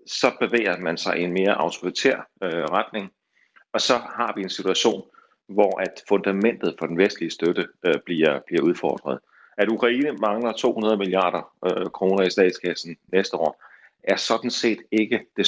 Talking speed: 150 wpm